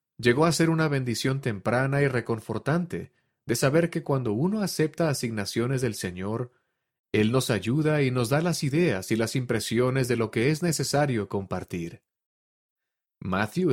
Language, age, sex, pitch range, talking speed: Spanish, 30-49, male, 110-140 Hz, 155 wpm